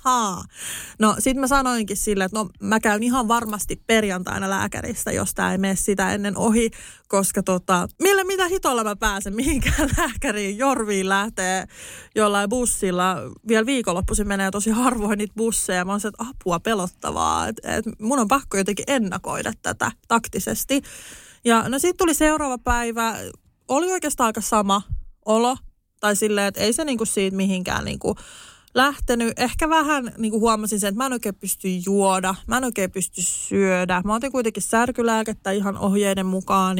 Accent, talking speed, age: native, 160 wpm, 30-49